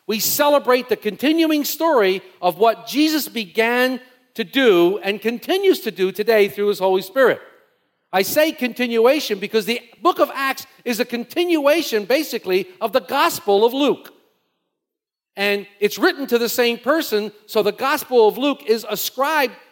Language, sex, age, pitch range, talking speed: English, male, 50-69, 190-250 Hz, 155 wpm